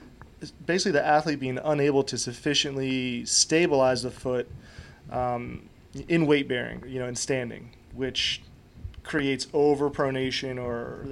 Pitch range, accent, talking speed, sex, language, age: 125-145 Hz, American, 115 wpm, male, English, 30-49